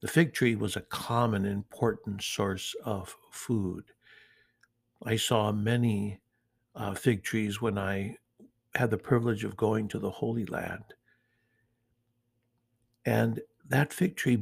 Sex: male